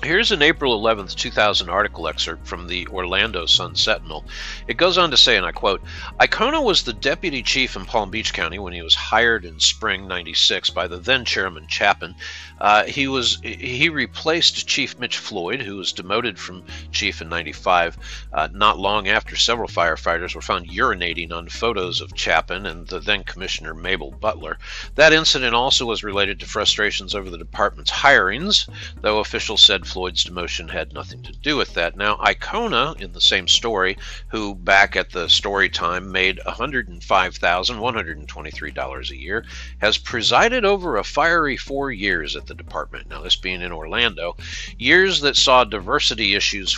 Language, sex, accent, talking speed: English, male, American, 170 wpm